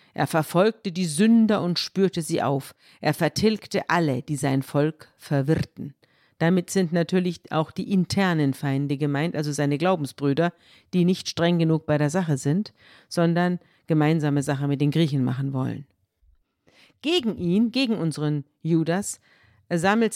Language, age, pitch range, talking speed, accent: German, 50-69, 150-195 Hz, 145 wpm, German